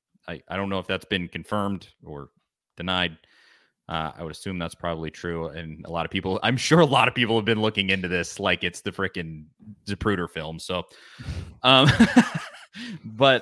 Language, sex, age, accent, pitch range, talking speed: English, male, 30-49, American, 100-145 Hz, 190 wpm